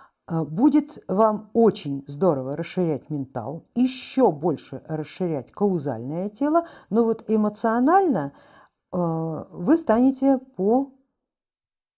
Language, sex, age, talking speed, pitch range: Russian, female, 50-69, 90 wpm, 160-225 Hz